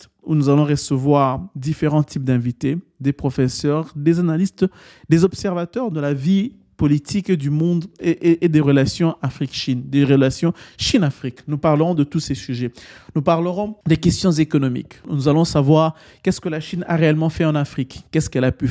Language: French